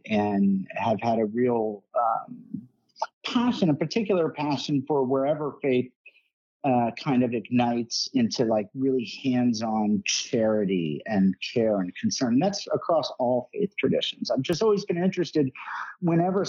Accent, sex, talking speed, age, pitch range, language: American, male, 135 wpm, 50-69, 125-170 Hz, English